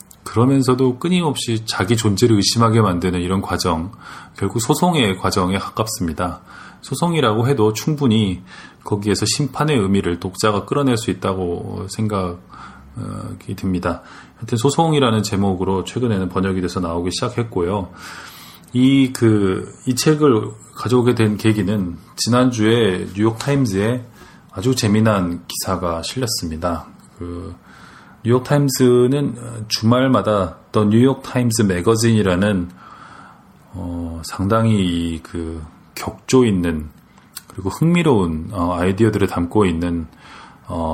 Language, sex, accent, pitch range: Korean, male, native, 90-120 Hz